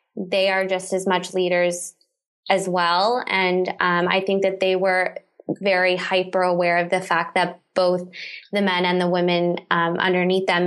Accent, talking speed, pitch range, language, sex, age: American, 175 wpm, 175-195 Hz, English, female, 20-39